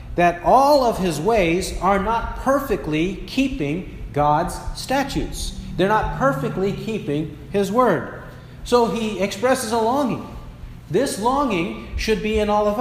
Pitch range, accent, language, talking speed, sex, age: 130-195 Hz, American, English, 135 wpm, male, 40-59